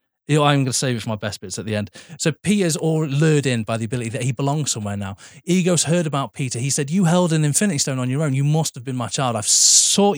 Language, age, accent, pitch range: English, 20-39, British, 115-165 Hz